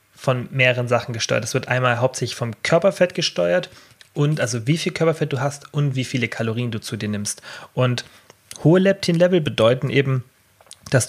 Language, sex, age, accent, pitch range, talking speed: German, male, 30-49, German, 120-145 Hz, 175 wpm